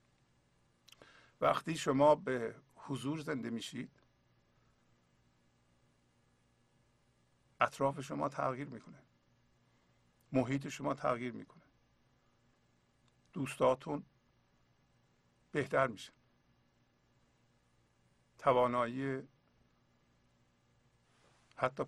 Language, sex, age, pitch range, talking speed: English, male, 50-69, 110-145 Hz, 50 wpm